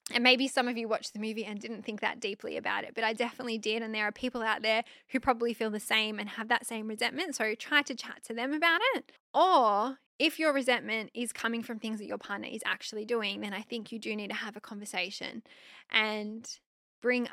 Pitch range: 210-240 Hz